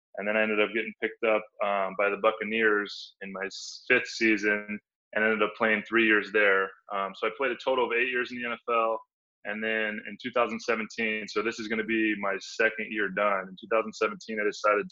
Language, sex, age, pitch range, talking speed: English, male, 20-39, 105-115 Hz, 215 wpm